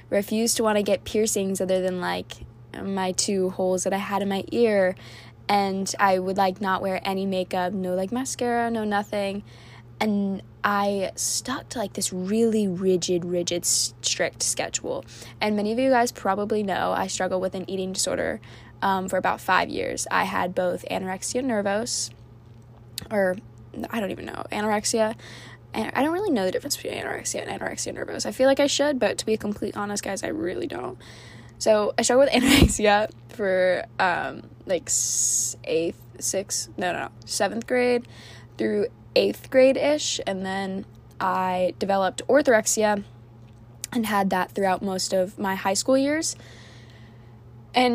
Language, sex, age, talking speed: English, female, 10-29, 165 wpm